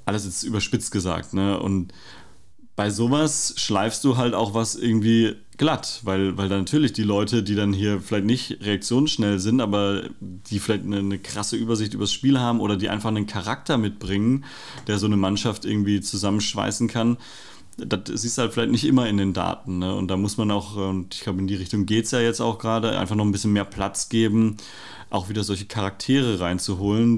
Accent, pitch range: German, 100-115 Hz